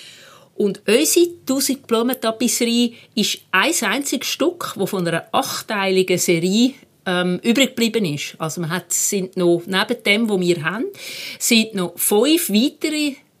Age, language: 50-69, German